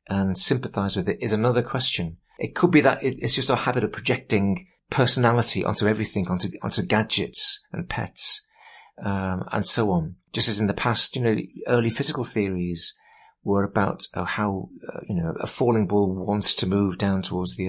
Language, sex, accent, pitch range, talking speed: English, male, British, 95-120 Hz, 185 wpm